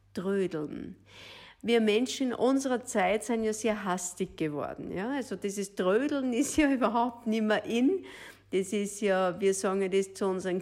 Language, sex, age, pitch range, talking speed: German, female, 50-69, 200-245 Hz, 165 wpm